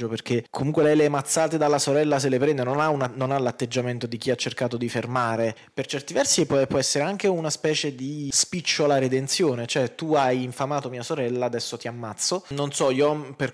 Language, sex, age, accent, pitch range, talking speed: Italian, male, 20-39, native, 120-150 Hz, 210 wpm